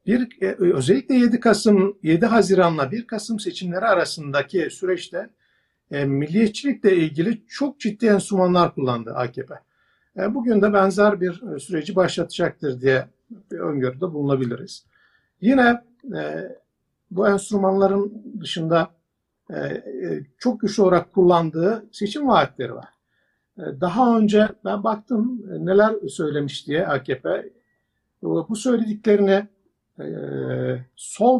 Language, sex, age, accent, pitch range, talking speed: Turkish, male, 60-79, native, 165-220 Hz, 95 wpm